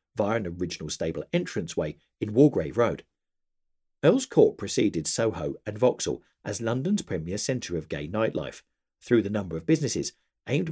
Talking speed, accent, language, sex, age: 150 wpm, British, English, male, 50-69